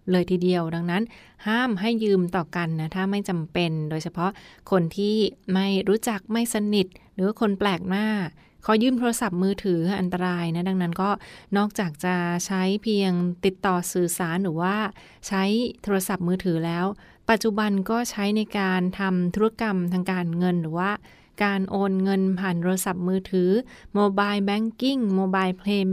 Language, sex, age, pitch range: Thai, female, 20-39, 180-205 Hz